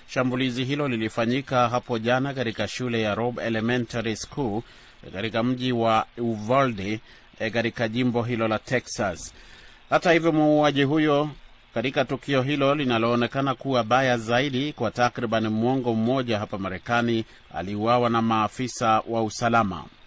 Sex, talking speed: male, 125 wpm